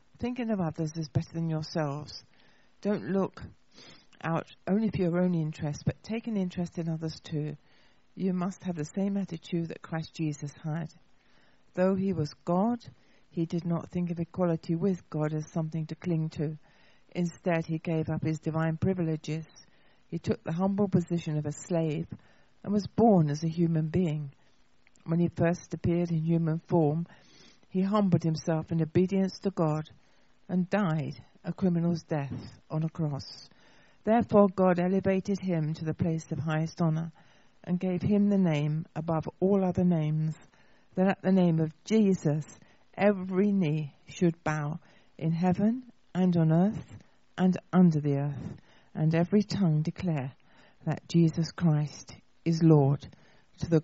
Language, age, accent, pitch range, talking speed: English, 60-79, British, 155-185 Hz, 160 wpm